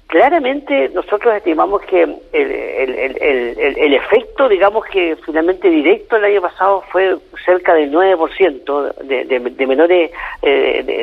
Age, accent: 50-69, Argentinian